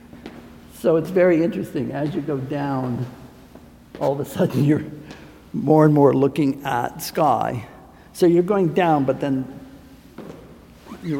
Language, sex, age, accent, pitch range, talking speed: English, male, 60-79, American, 120-175 Hz, 140 wpm